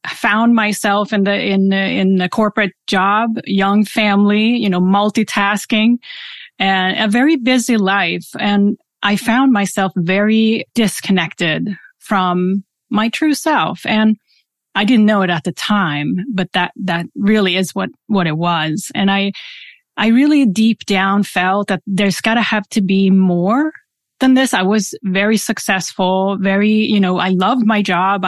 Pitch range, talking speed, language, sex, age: 190-220 Hz, 155 wpm, English, female, 30-49